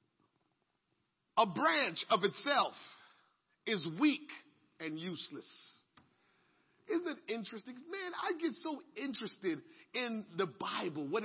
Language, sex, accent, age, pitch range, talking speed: English, male, American, 40-59, 215-330 Hz, 105 wpm